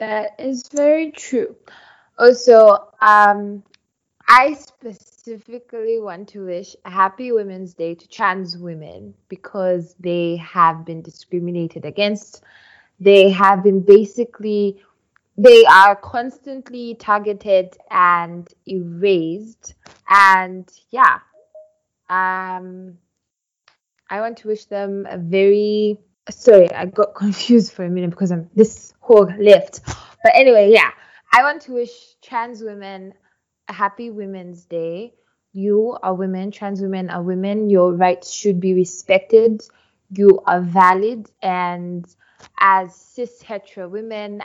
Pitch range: 185-225 Hz